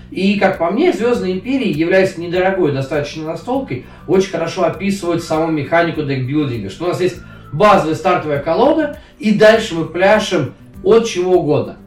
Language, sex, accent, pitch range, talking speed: Russian, male, native, 135-195 Hz, 150 wpm